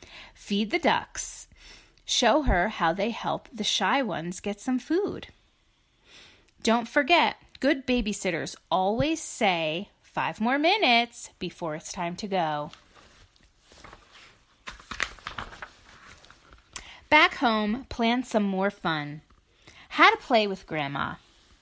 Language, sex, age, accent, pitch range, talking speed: English, female, 30-49, American, 190-260 Hz, 110 wpm